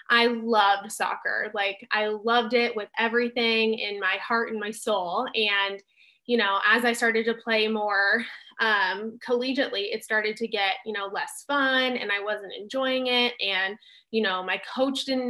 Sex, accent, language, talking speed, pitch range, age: female, American, English, 175 wpm, 200-235 Hz, 20-39